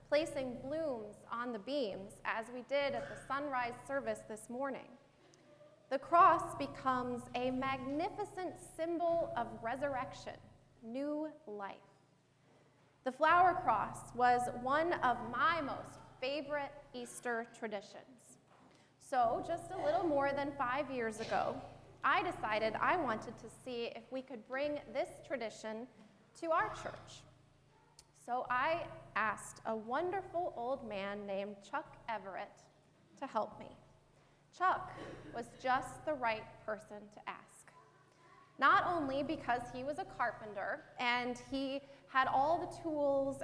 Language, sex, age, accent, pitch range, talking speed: English, female, 20-39, American, 235-300 Hz, 130 wpm